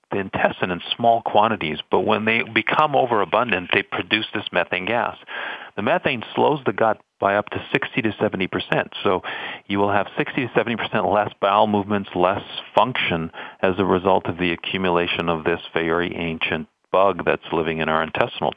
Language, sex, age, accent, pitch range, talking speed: English, male, 50-69, American, 85-110 Hz, 170 wpm